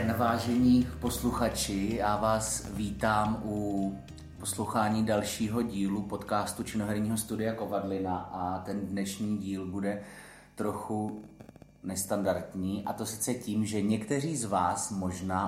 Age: 30-49